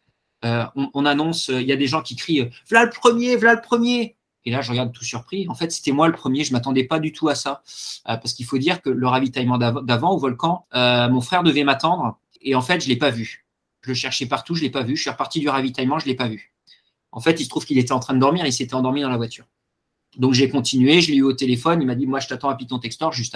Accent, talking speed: French, 300 wpm